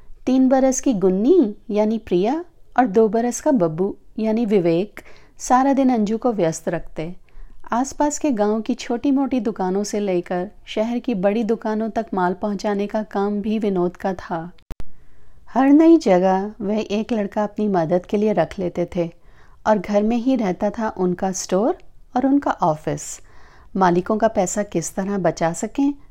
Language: Hindi